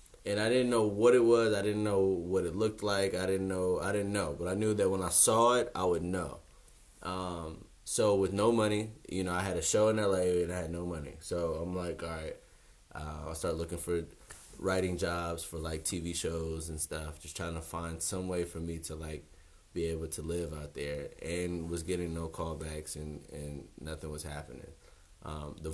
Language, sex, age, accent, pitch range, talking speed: English, male, 20-39, American, 75-90 Hz, 220 wpm